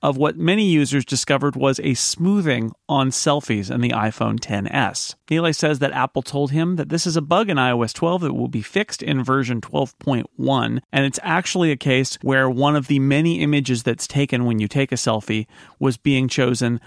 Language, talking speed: English, 200 wpm